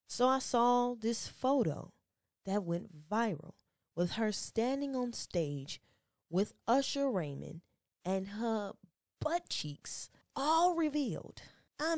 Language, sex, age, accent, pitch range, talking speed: English, female, 10-29, American, 150-225 Hz, 115 wpm